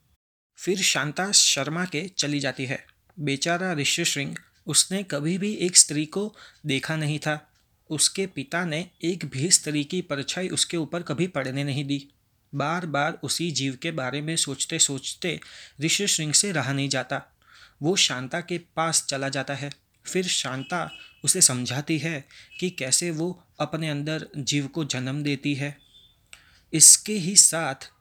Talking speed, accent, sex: 155 wpm, native, male